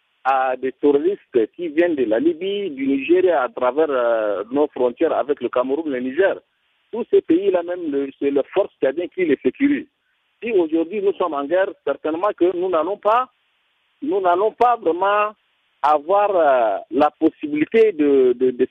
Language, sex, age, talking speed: French, male, 50-69, 175 wpm